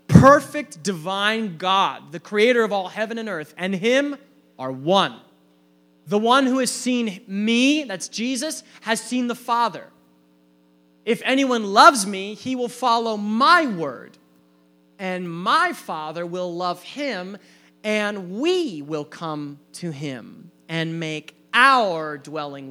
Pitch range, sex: 155-235 Hz, male